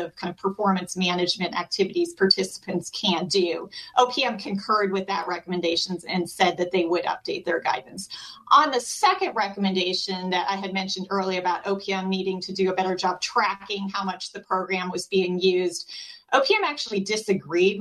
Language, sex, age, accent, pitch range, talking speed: English, female, 30-49, American, 185-215 Hz, 170 wpm